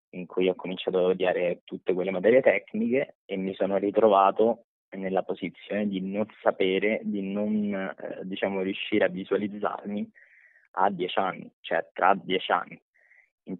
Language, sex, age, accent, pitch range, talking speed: Italian, male, 20-39, native, 95-110 Hz, 150 wpm